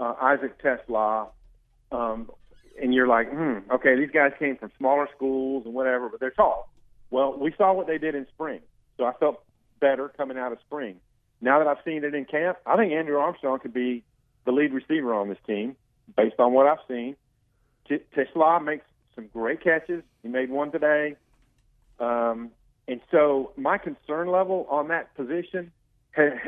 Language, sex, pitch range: English, male, 120-145 Hz